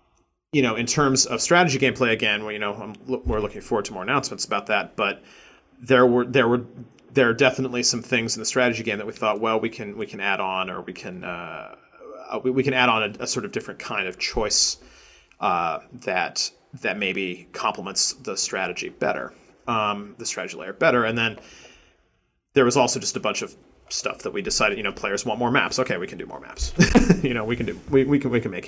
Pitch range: 105-130 Hz